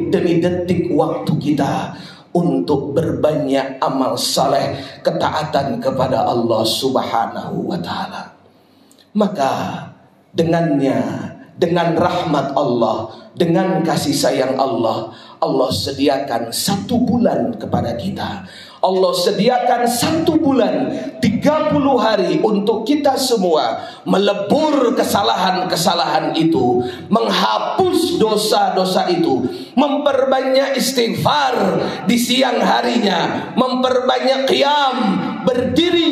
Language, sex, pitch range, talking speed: Indonesian, male, 160-265 Hz, 85 wpm